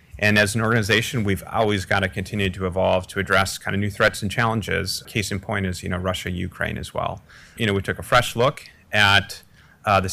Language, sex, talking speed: English, male, 230 wpm